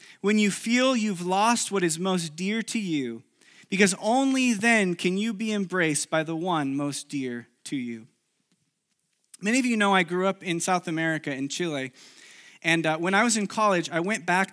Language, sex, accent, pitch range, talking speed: English, male, American, 170-210 Hz, 195 wpm